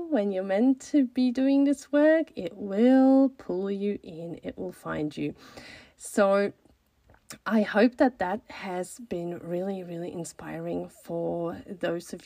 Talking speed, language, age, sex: 145 wpm, English, 30-49, female